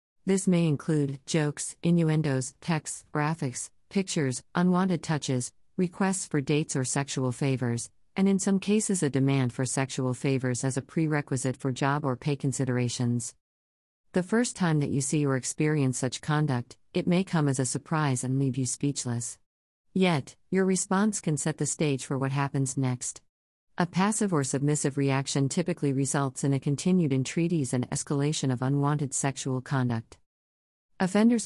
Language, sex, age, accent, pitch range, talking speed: English, female, 40-59, American, 130-160 Hz, 155 wpm